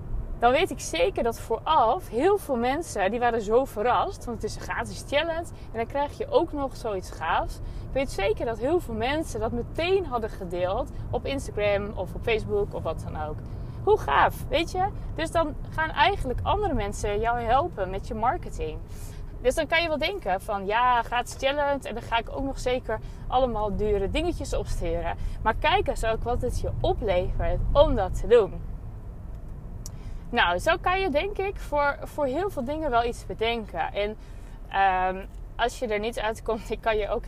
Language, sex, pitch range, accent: Dutch, female, 210-290 Hz, Dutch